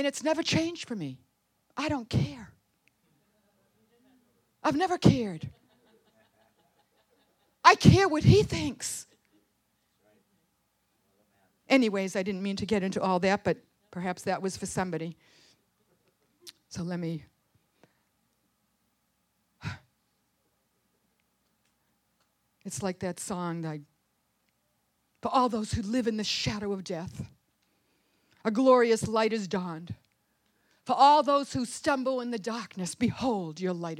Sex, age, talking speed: female, 50-69, 115 wpm